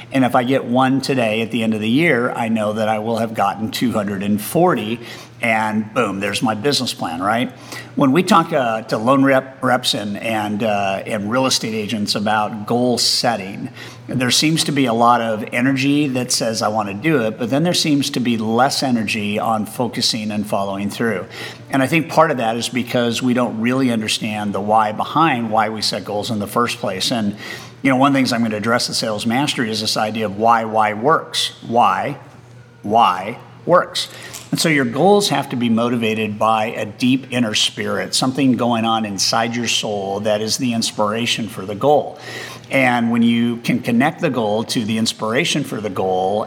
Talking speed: 205 wpm